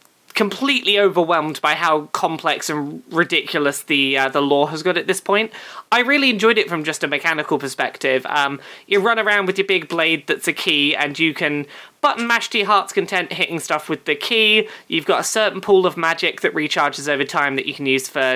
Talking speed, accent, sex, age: 215 wpm, British, male, 20-39